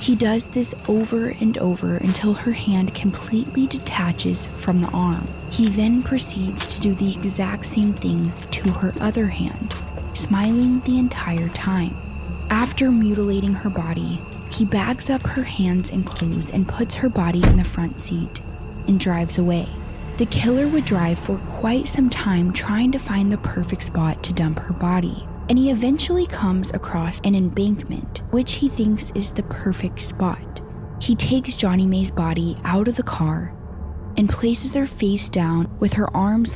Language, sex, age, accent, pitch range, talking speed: English, female, 10-29, American, 165-225 Hz, 165 wpm